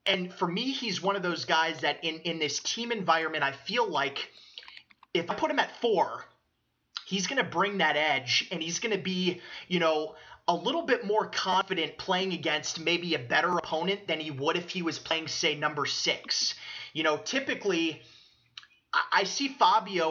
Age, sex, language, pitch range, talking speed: 30-49, male, English, 165-210 Hz, 190 wpm